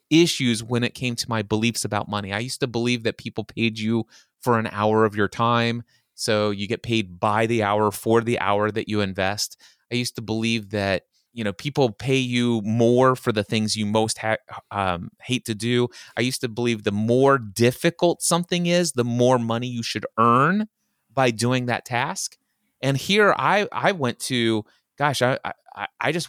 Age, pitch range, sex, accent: 30-49, 110-140 Hz, male, American